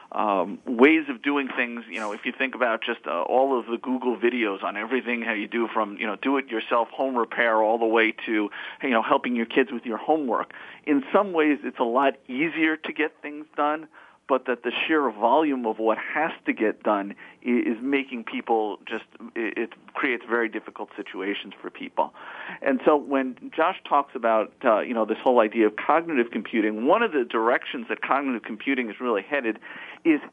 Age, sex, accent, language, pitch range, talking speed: 40-59, male, American, English, 110-135 Hz, 200 wpm